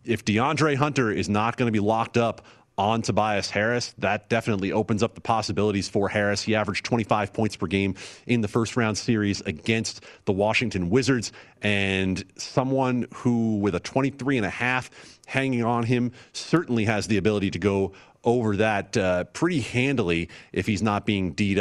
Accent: American